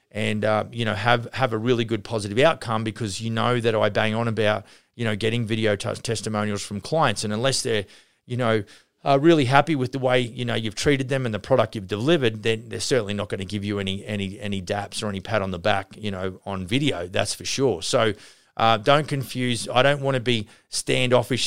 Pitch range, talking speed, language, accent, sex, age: 110-130 Hz, 230 wpm, English, Australian, male, 30-49